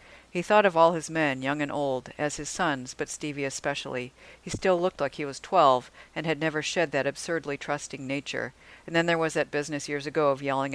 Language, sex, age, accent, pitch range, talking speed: English, female, 50-69, American, 135-160 Hz, 225 wpm